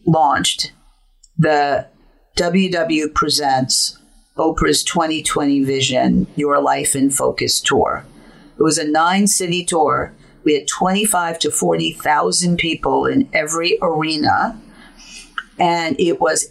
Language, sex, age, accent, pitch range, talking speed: English, female, 50-69, American, 150-220 Hz, 110 wpm